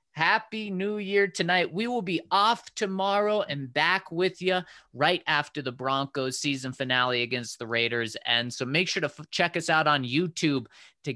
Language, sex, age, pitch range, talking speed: English, male, 30-49, 120-165 Hz, 185 wpm